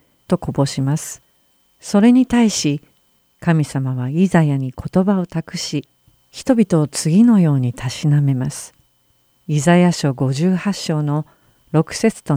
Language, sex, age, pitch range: Japanese, female, 50-69, 140-180 Hz